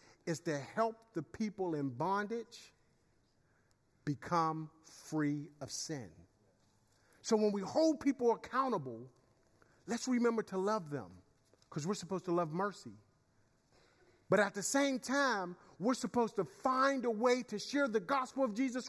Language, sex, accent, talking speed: English, male, American, 145 wpm